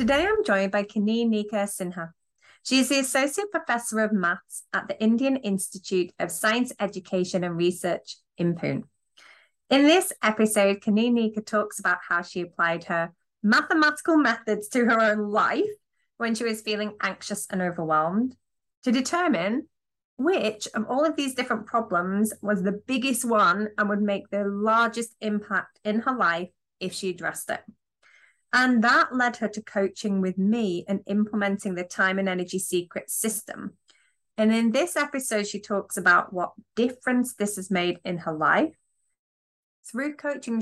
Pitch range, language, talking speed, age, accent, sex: 185-235 Hz, English, 160 wpm, 30-49, British, female